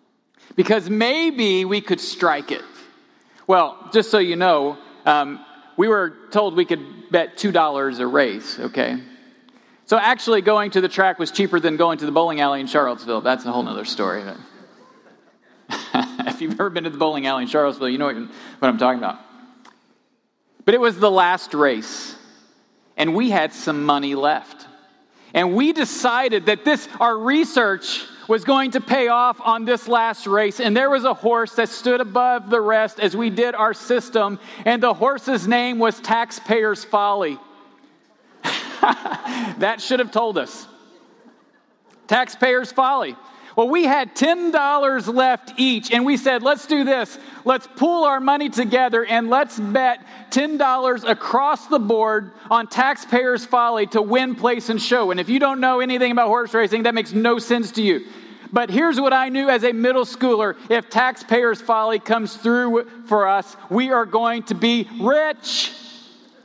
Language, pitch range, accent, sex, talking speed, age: English, 205-255 Hz, American, male, 165 wpm, 40-59